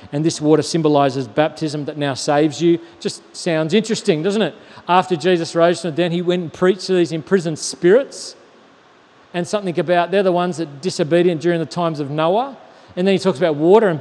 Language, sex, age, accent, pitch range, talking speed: English, male, 40-59, Australian, 165-200 Hz, 205 wpm